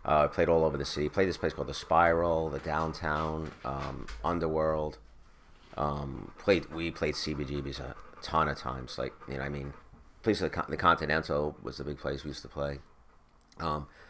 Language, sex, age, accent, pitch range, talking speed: English, male, 30-49, American, 70-80 Hz, 195 wpm